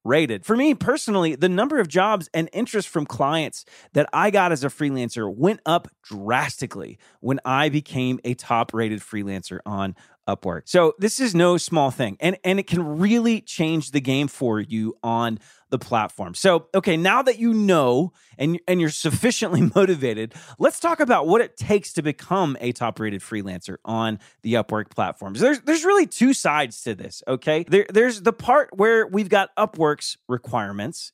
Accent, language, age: American, English, 30-49